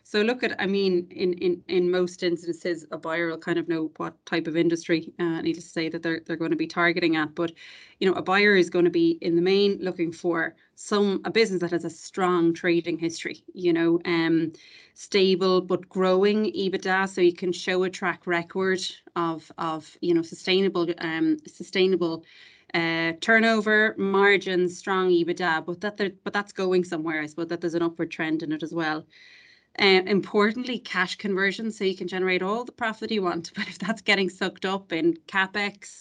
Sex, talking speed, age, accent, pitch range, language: female, 200 wpm, 20-39, Irish, 170-195 Hz, English